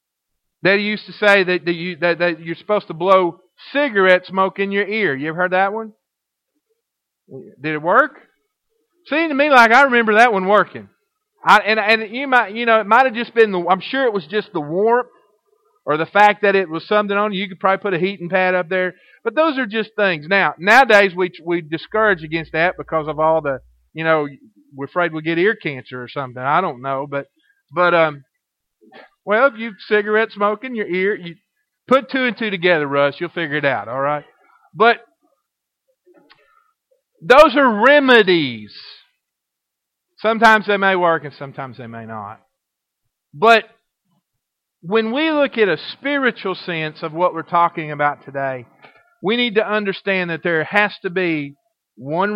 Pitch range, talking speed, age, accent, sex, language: 160-230 Hz, 185 wpm, 40-59, American, male, English